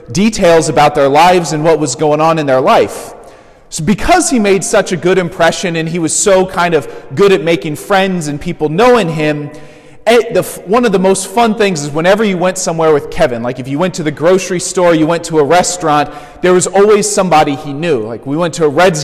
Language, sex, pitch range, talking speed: English, male, 150-195 Hz, 230 wpm